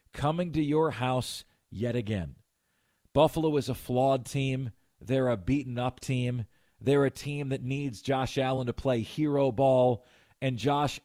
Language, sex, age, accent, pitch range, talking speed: English, male, 40-59, American, 125-155 Hz, 160 wpm